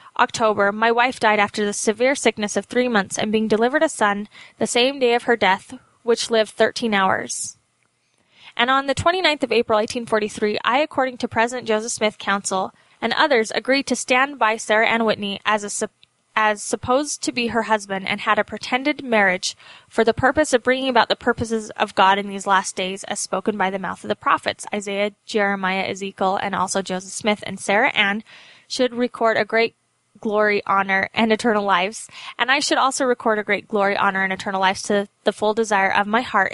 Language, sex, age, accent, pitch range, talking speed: English, female, 10-29, American, 200-240 Hz, 200 wpm